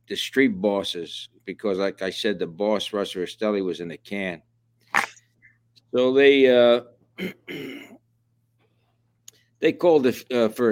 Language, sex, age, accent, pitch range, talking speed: English, male, 60-79, American, 100-115 Hz, 130 wpm